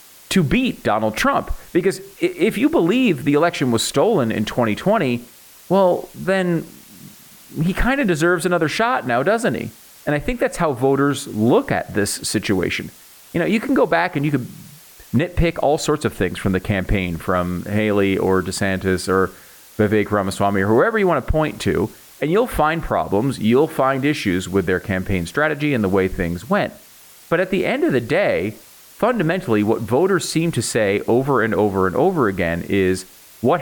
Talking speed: 185 wpm